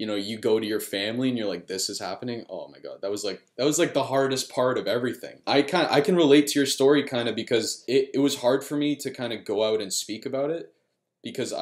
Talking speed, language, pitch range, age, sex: 280 wpm, English, 105-135 Hz, 20-39, male